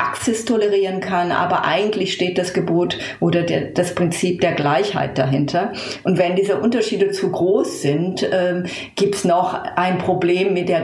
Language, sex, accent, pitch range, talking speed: German, female, German, 170-195 Hz, 160 wpm